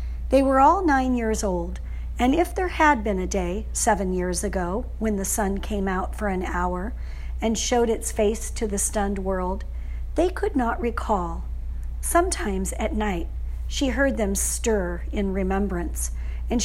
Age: 50-69